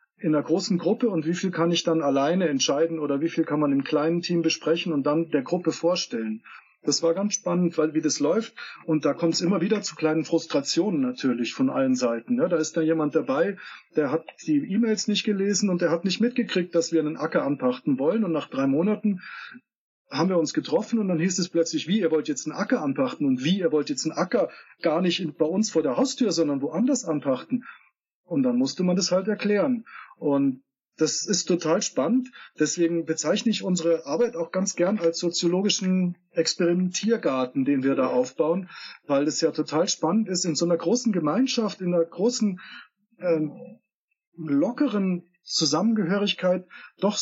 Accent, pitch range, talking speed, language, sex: German, 160-220 Hz, 195 wpm, German, male